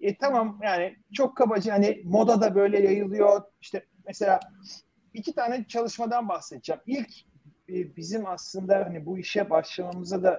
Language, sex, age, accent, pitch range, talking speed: Turkish, male, 40-59, native, 165-225 Hz, 140 wpm